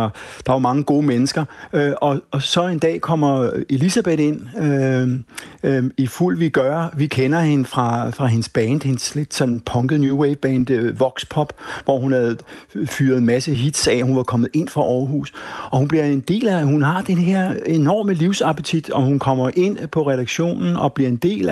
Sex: male